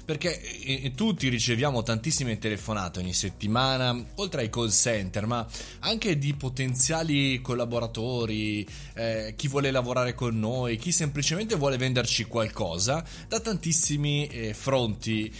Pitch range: 105-140 Hz